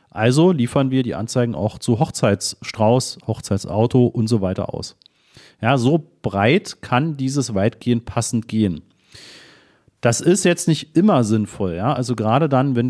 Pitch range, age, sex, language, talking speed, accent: 105-135 Hz, 40-59, male, German, 150 wpm, German